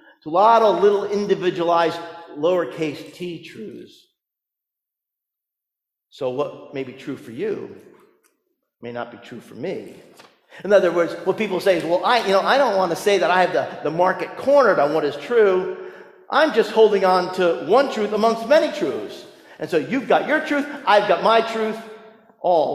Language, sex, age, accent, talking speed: English, male, 50-69, American, 180 wpm